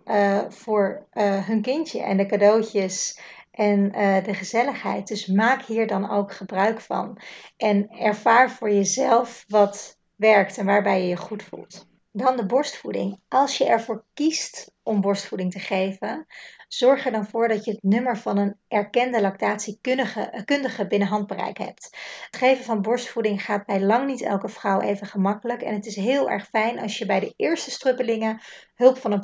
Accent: Dutch